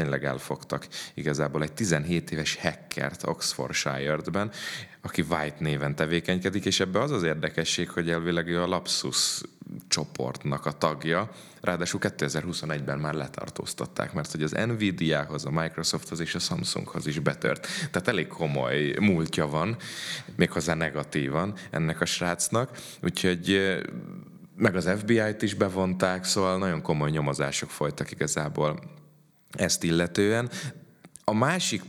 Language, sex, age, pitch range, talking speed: Hungarian, male, 30-49, 75-95 Hz, 125 wpm